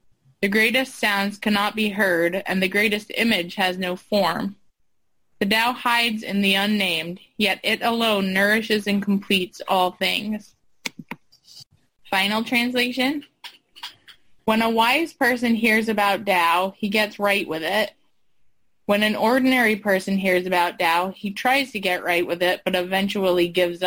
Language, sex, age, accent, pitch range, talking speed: English, female, 20-39, American, 190-230 Hz, 145 wpm